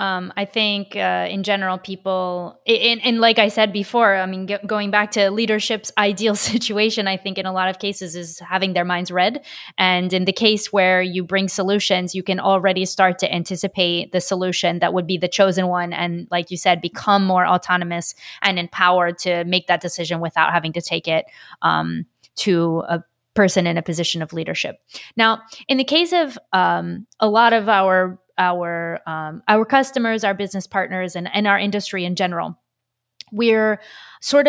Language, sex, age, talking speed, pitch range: English, female, 20-39, 190 wpm, 180-215 Hz